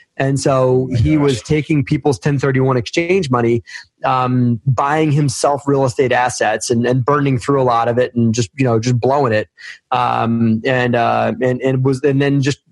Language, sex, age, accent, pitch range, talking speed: English, male, 20-39, American, 120-140 Hz, 185 wpm